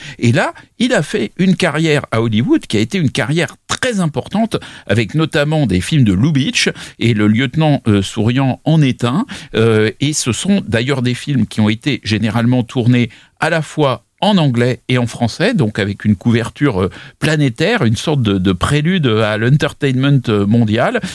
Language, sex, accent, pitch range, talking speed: French, male, French, 110-145 Hz, 175 wpm